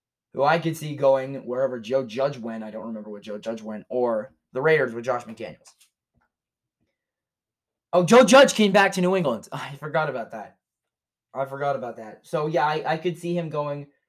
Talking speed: 195 wpm